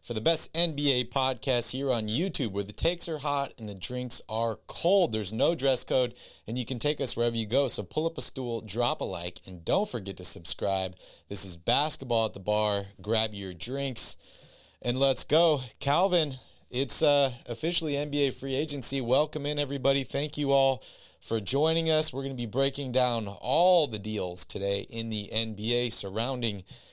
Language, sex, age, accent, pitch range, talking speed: English, male, 30-49, American, 110-140 Hz, 190 wpm